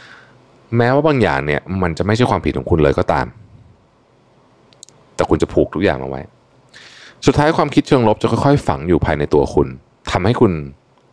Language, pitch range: Thai, 75-120 Hz